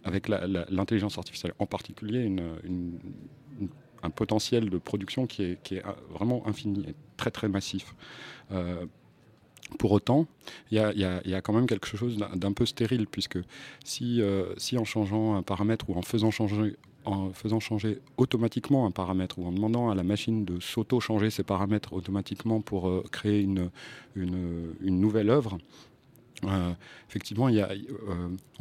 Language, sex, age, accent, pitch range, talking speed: French, male, 40-59, French, 95-110 Hz, 170 wpm